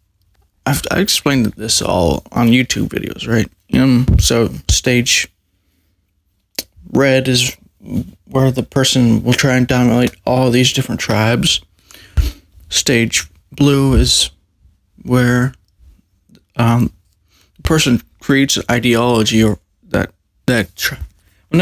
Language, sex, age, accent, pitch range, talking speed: English, male, 20-39, American, 90-120 Hz, 110 wpm